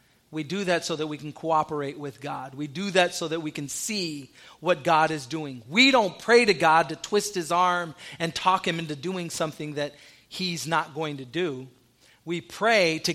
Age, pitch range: 40-59, 150-180 Hz